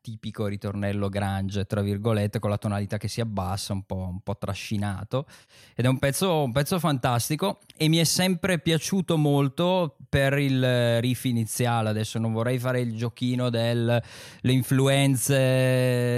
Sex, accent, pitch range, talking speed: male, native, 105-130 Hz, 150 wpm